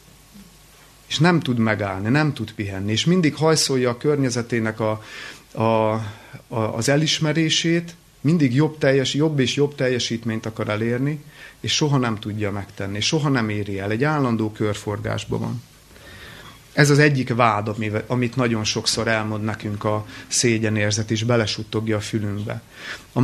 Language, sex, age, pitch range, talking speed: Hungarian, male, 30-49, 110-140 Hz, 140 wpm